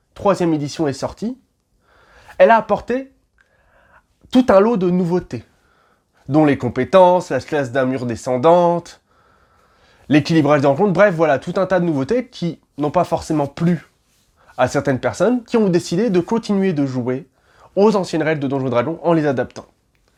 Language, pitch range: French, 140-185 Hz